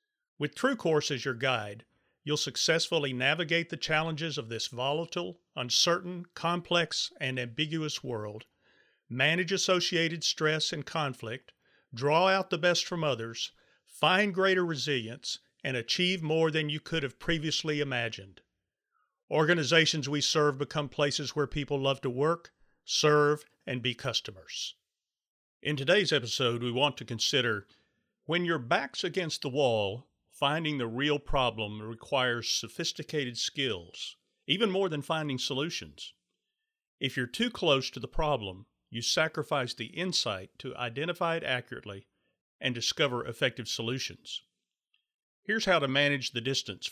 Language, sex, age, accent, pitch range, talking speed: English, male, 40-59, American, 125-165 Hz, 135 wpm